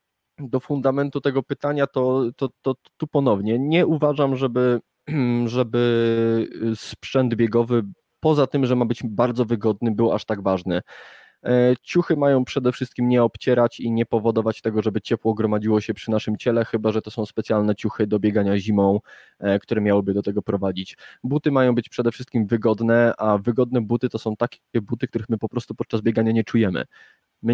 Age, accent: 20-39, native